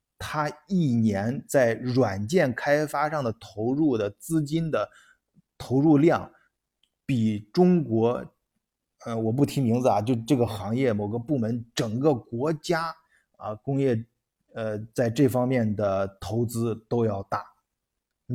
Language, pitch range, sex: Chinese, 115-145 Hz, male